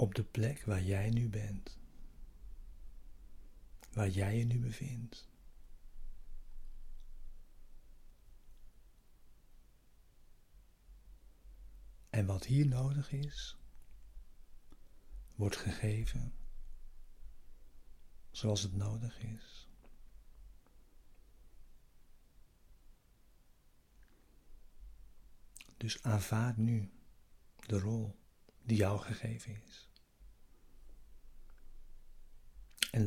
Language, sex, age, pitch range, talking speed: Dutch, male, 60-79, 85-110 Hz, 60 wpm